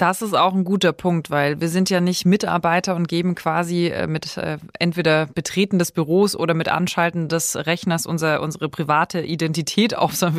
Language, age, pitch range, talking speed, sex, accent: German, 20-39, 165-195 Hz, 185 wpm, female, German